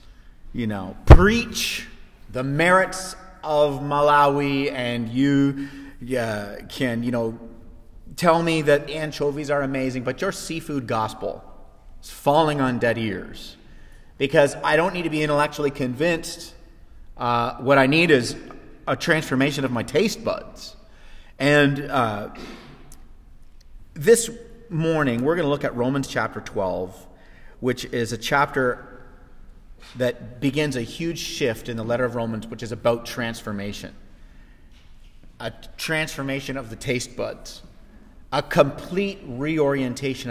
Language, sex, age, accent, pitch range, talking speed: English, male, 40-59, American, 110-145 Hz, 130 wpm